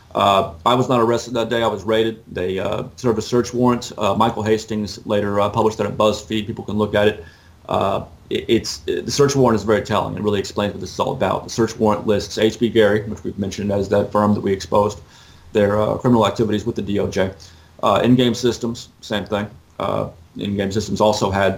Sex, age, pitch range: male, 30-49, 100-115 Hz